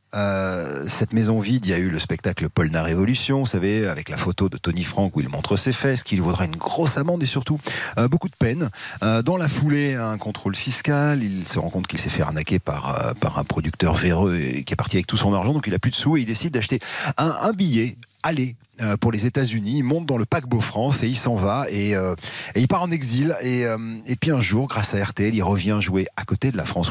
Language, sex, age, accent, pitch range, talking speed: French, male, 40-59, French, 90-125 Hz, 260 wpm